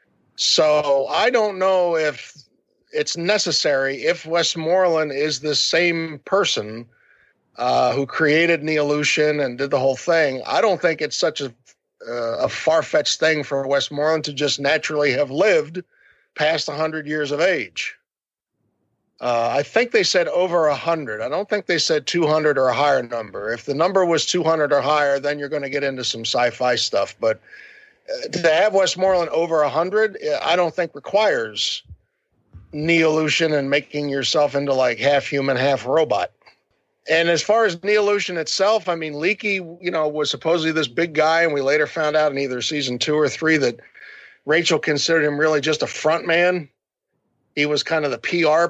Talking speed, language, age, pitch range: 175 wpm, English, 50-69, 140-170 Hz